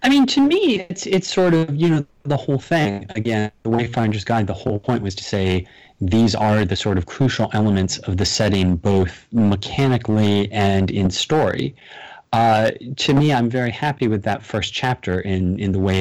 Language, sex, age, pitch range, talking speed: English, male, 30-49, 95-115 Hz, 195 wpm